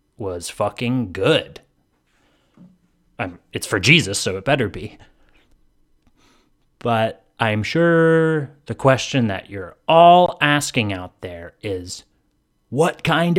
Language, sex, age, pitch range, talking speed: English, male, 30-49, 100-140 Hz, 110 wpm